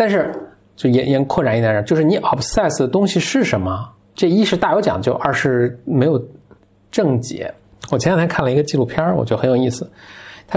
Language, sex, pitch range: Chinese, male, 110-155 Hz